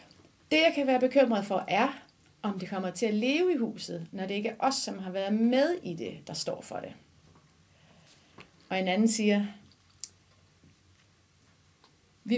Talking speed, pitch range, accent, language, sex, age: 170 wpm, 185-240 Hz, native, Danish, female, 30-49